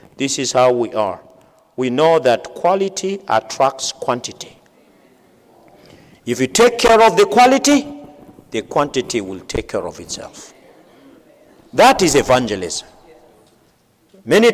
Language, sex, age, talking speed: English, male, 50-69, 120 wpm